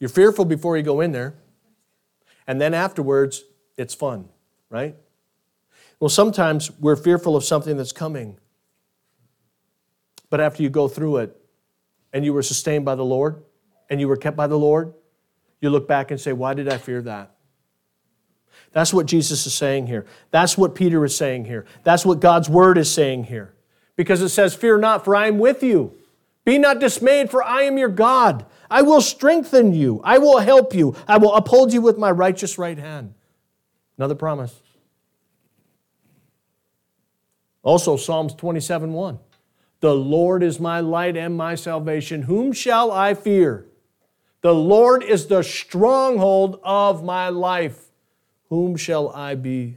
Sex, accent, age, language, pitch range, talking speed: male, American, 40-59, English, 135-185 Hz, 160 wpm